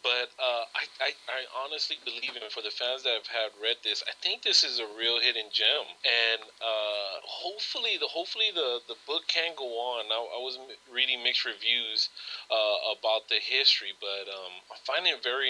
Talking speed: 210 wpm